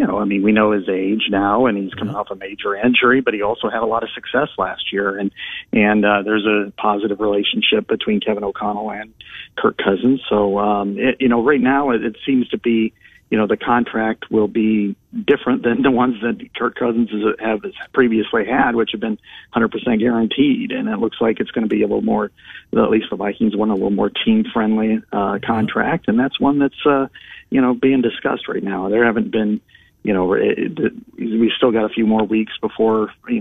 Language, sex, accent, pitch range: English, male, American, 105-120 Hz